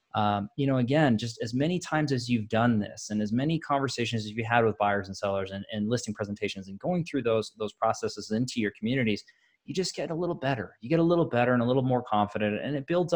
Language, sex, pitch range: English, male, 105-140 Hz